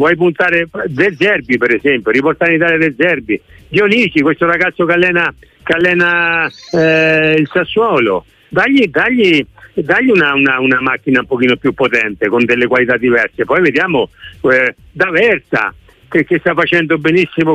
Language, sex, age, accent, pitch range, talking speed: Italian, male, 60-79, native, 130-170 Hz, 155 wpm